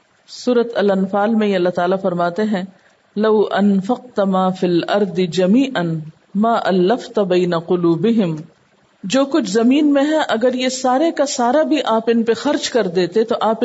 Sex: female